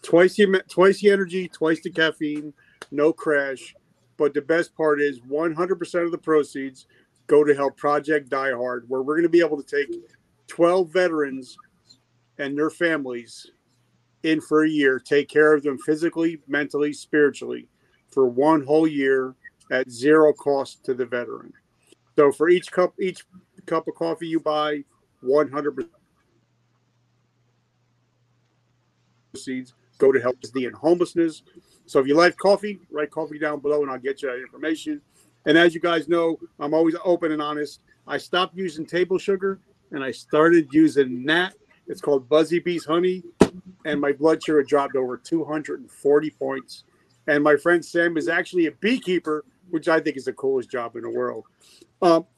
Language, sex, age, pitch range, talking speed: English, male, 40-59, 140-175 Hz, 165 wpm